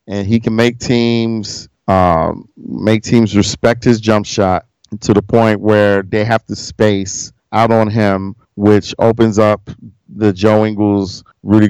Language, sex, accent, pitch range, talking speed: English, male, American, 100-115 Hz, 155 wpm